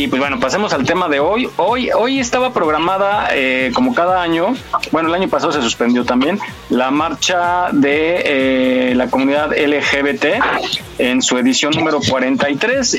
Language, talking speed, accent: Spanish, 160 wpm, Mexican